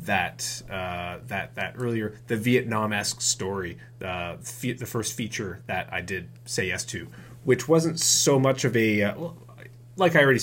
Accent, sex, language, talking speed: American, male, English, 175 wpm